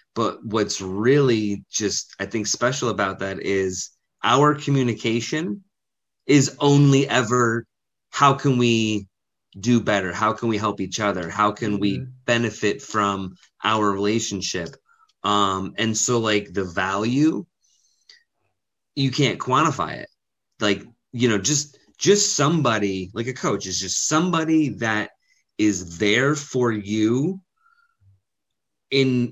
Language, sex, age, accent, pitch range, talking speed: English, male, 30-49, American, 100-135 Hz, 125 wpm